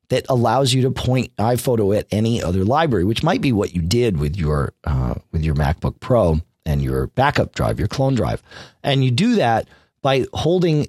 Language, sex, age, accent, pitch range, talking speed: English, male, 40-59, American, 95-145 Hz, 200 wpm